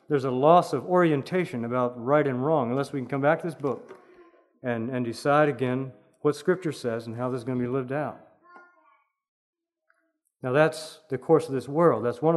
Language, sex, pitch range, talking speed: English, male, 140-185 Hz, 205 wpm